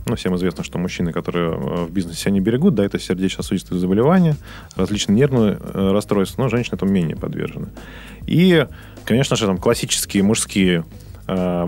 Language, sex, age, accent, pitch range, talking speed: Russian, male, 20-39, native, 90-120 Hz, 155 wpm